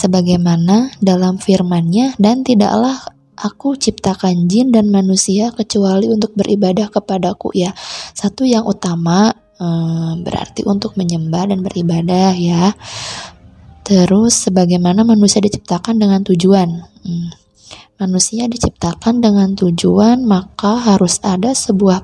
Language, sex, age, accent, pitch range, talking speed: Indonesian, female, 20-39, native, 180-215 Hz, 105 wpm